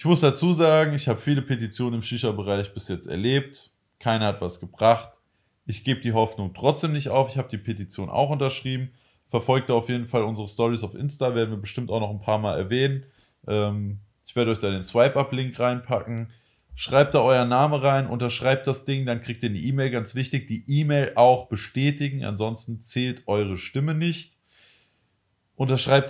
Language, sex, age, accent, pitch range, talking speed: German, male, 20-39, German, 110-130 Hz, 185 wpm